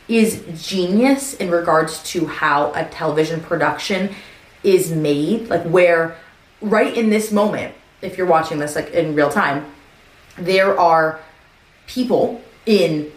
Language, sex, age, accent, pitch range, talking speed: English, female, 30-49, American, 165-230 Hz, 130 wpm